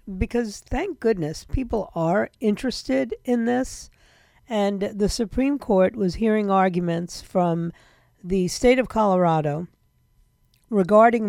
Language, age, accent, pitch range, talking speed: English, 50-69, American, 175-235 Hz, 110 wpm